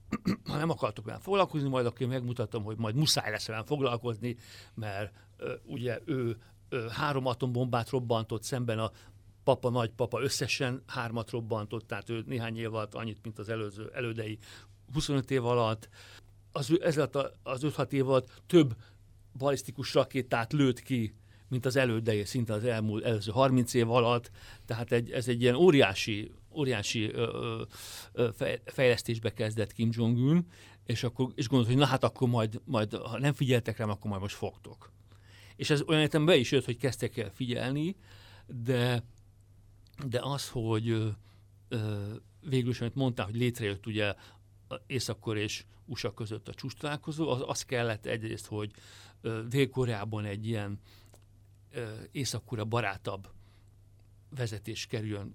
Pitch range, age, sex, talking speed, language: 105-130 Hz, 60-79, male, 145 wpm, Hungarian